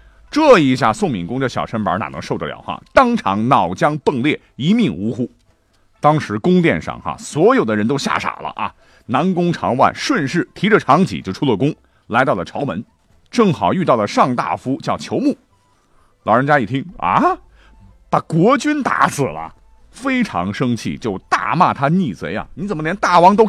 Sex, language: male, Chinese